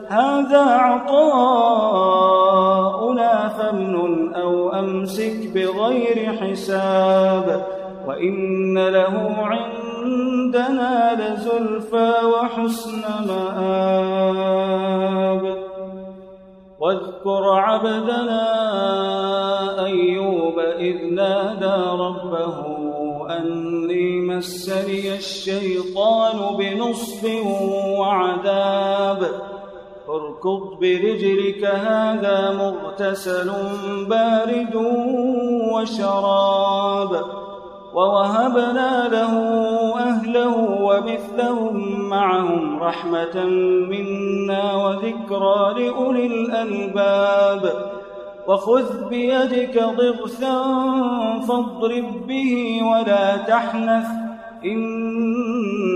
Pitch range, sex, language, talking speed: 190-230 Hz, male, Arabic, 50 wpm